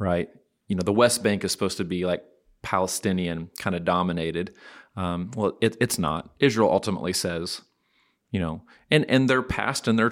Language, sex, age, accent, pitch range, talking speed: English, male, 30-49, American, 90-105 Hz, 180 wpm